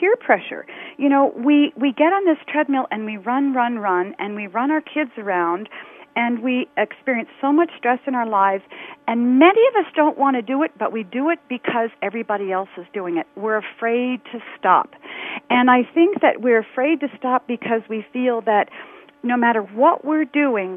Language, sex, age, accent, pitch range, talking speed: English, female, 40-59, American, 210-290 Hz, 200 wpm